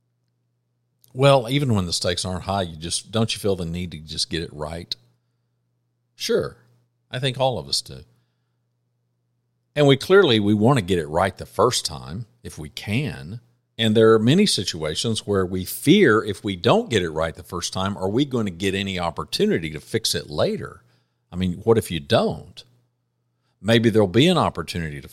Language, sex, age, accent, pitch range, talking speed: English, male, 50-69, American, 75-115 Hz, 195 wpm